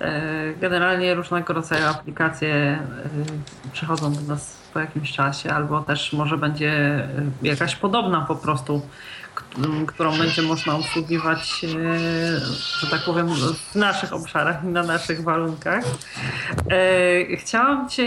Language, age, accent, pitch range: Polish, 40-59, native, 160-190 Hz